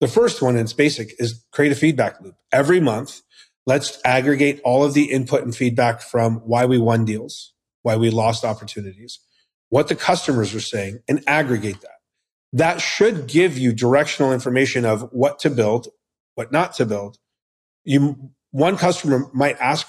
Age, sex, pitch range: 40-59, male, 115-140 Hz